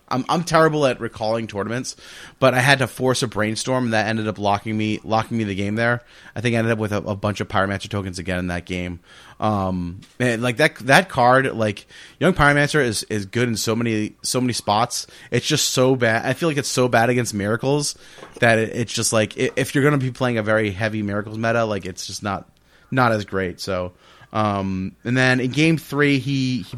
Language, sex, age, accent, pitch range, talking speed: English, male, 30-49, American, 105-130 Hz, 225 wpm